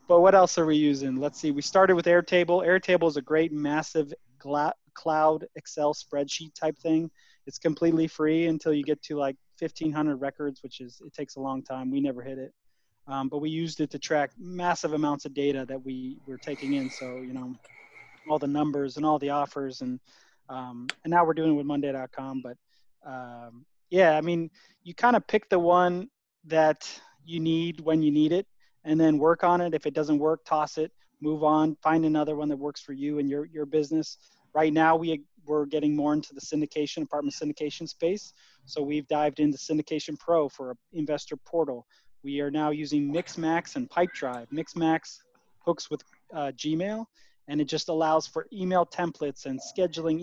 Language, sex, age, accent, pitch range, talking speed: English, male, 20-39, American, 140-160 Hz, 195 wpm